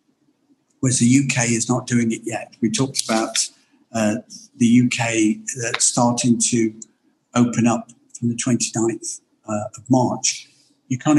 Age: 50-69